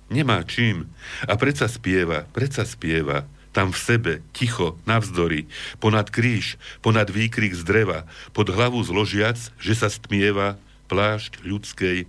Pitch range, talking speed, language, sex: 80-110 Hz, 130 wpm, Slovak, male